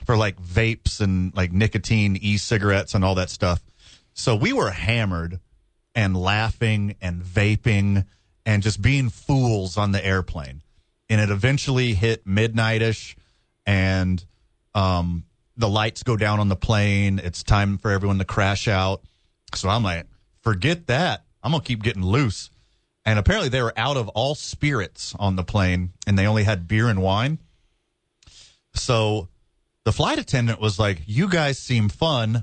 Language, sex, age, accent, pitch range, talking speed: English, male, 30-49, American, 95-120 Hz, 160 wpm